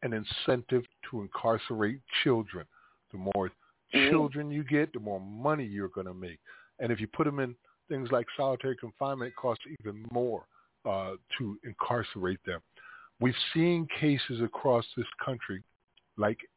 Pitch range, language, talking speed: 110-140 Hz, English, 150 wpm